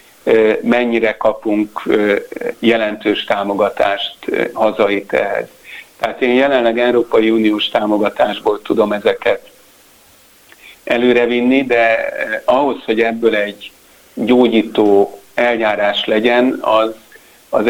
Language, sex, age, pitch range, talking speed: Hungarian, male, 50-69, 105-120 Hz, 90 wpm